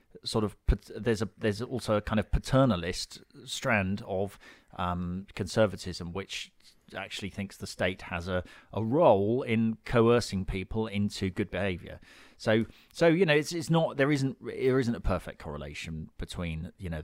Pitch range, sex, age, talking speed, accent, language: 85-110 Hz, male, 30-49, 160 wpm, British, English